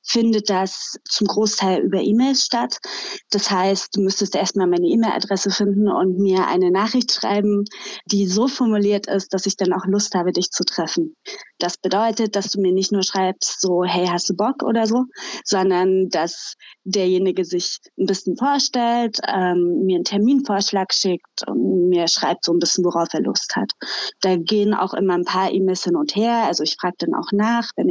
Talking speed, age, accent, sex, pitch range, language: 185 wpm, 20-39, German, female, 185-225 Hz, German